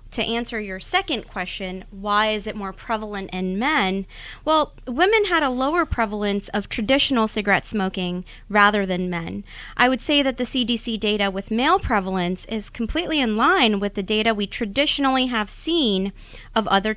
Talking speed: 170 wpm